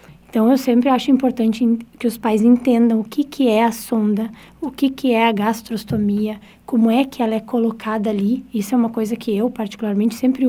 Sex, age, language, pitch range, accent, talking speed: female, 20-39, Portuguese, 210-255 Hz, Brazilian, 205 wpm